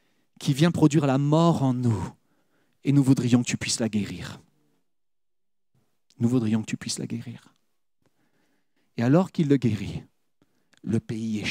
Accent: French